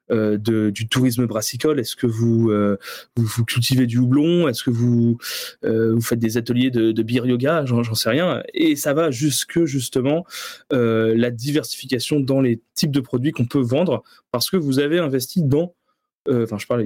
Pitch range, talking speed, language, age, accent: 120-150 Hz, 195 wpm, French, 20-39, French